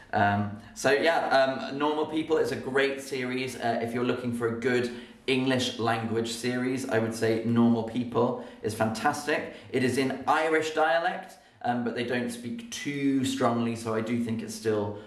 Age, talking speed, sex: 20-39, 180 wpm, male